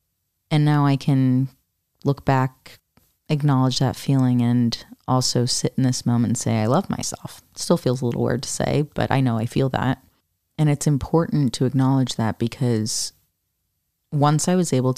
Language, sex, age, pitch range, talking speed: English, female, 30-49, 110-135 Hz, 175 wpm